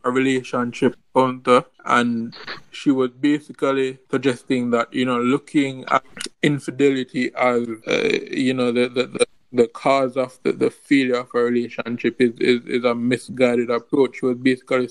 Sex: male